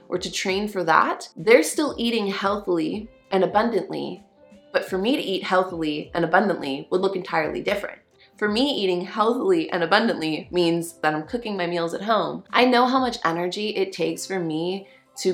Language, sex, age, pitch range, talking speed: English, female, 20-39, 155-195 Hz, 185 wpm